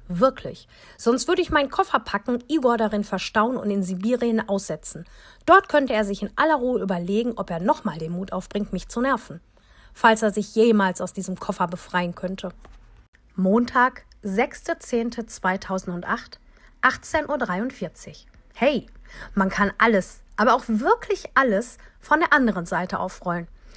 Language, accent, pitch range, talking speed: German, German, 195-255 Hz, 145 wpm